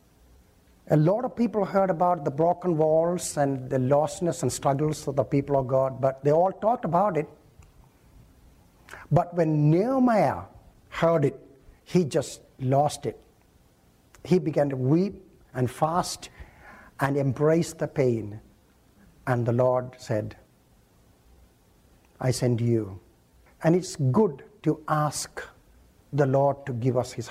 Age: 60-79